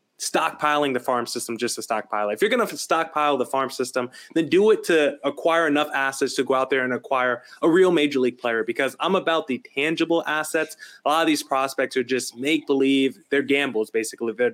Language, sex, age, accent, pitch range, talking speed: English, male, 20-39, American, 125-155 Hz, 210 wpm